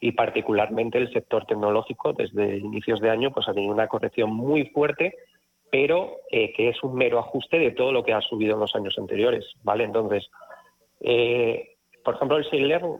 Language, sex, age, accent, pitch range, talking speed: Spanish, male, 30-49, Spanish, 110-135 Hz, 185 wpm